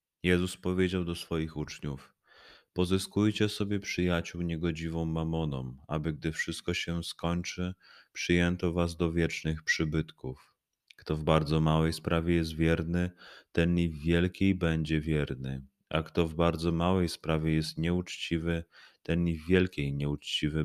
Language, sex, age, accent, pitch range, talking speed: Polish, male, 30-49, native, 80-90 Hz, 135 wpm